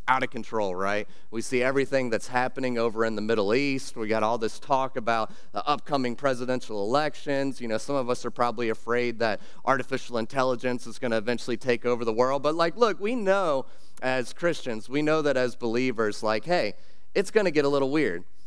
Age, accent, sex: 30-49, American, male